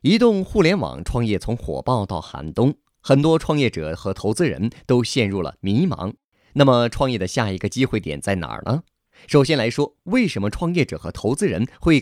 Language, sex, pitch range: Chinese, male, 100-145 Hz